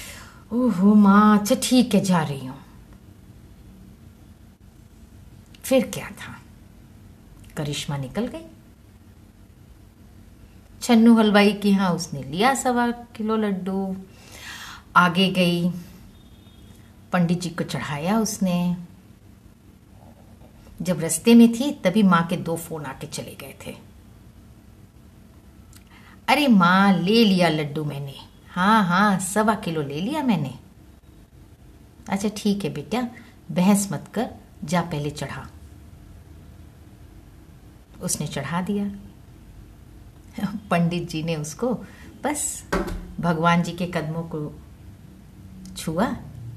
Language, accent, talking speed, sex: Hindi, native, 105 wpm, female